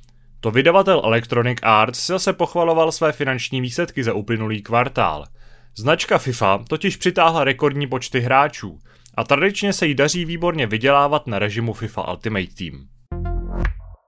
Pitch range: 115-170 Hz